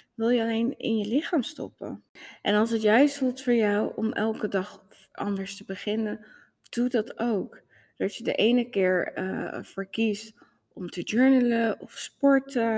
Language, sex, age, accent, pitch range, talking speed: Dutch, female, 20-39, Dutch, 185-235 Hz, 165 wpm